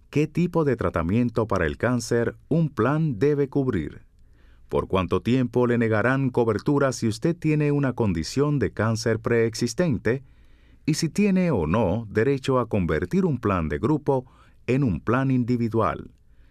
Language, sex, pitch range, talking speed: Spanish, male, 95-135 Hz, 150 wpm